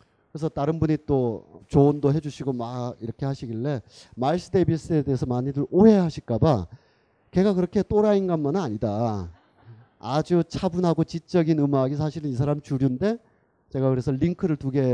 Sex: male